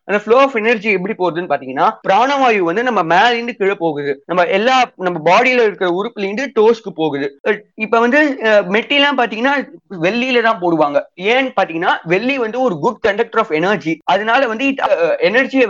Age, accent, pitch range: 30-49, native, 175-245 Hz